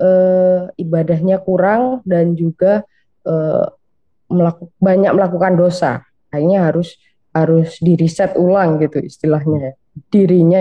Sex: female